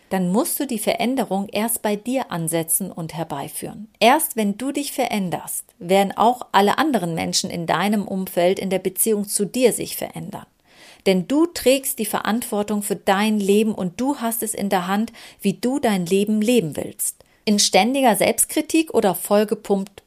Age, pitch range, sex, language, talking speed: 40-59, 185-225 Hz, female, German, 170 wpm